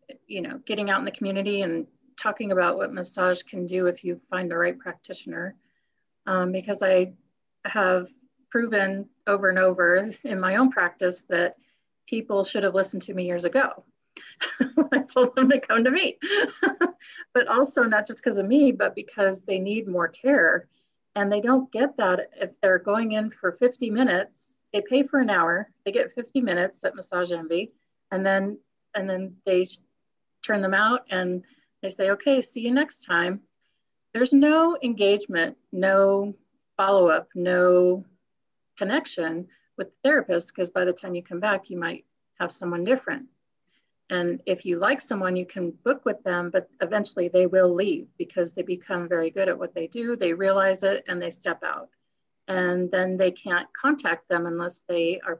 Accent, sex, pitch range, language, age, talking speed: American, female, 180-245 Hz, English, 40-59, 175 wpm